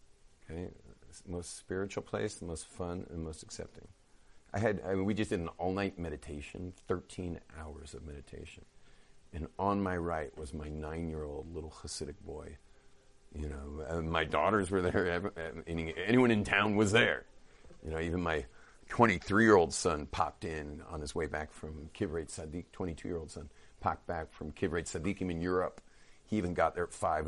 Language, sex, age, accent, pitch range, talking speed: English, male, 40-59, American, 75-90 Hz, 185 wpm